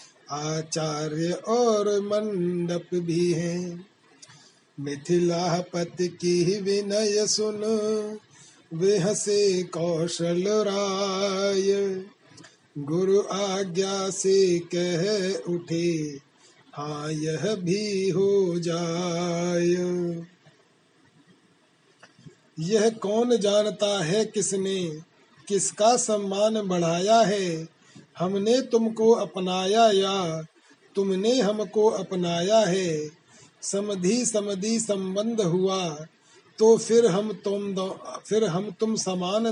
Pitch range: 170-210 Hz